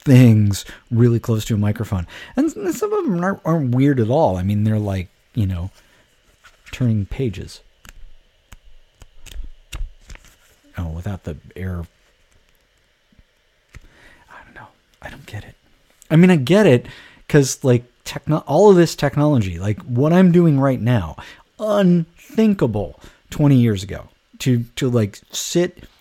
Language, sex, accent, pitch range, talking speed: English, male, American, 100-135 Hz, 140 wpm